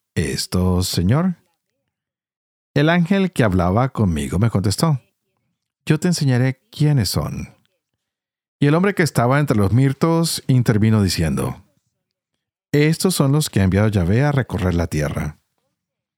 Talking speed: 130 wpm